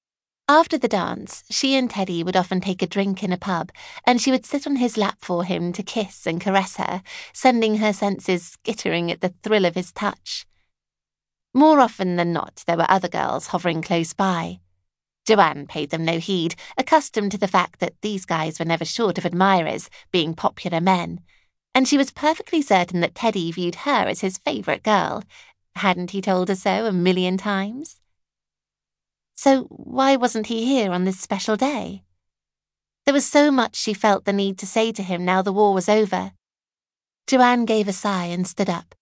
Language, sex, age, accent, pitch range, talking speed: English, female, 30-49, British, 180-230 Hz, 190 wpm